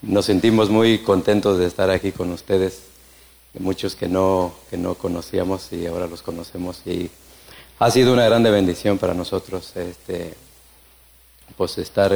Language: Spanish